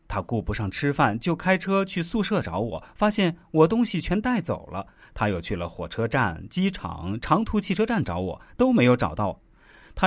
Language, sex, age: Chinese, male, 30-49